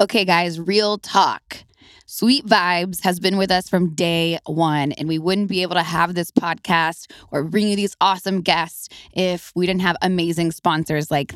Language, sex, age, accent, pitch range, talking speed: English, female, 20-39, American, 170-220 Hz, 185 wpm